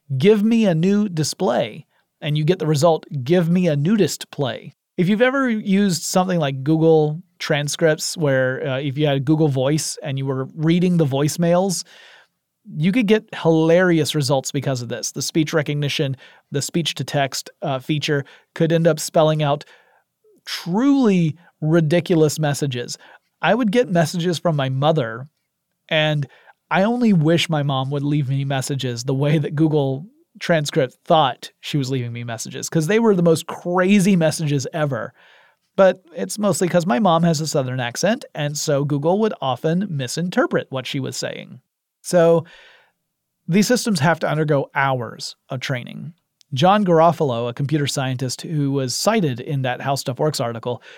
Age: 30-49